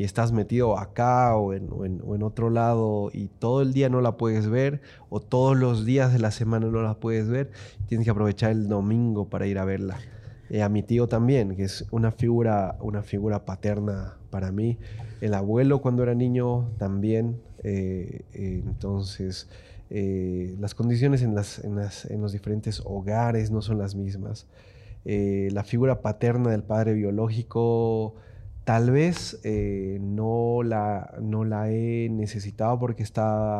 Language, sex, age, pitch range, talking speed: Spanish, male, 30-49, 100-115 Hz, 170 wpm